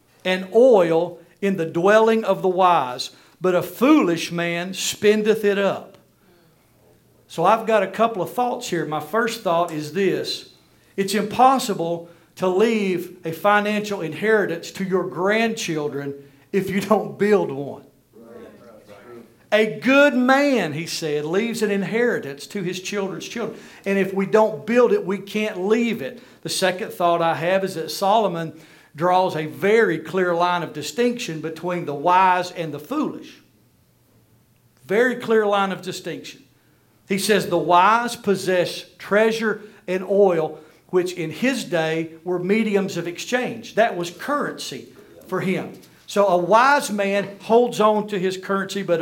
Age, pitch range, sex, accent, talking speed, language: 50-69, 170-215 Hz, male, American, 150 wpm, English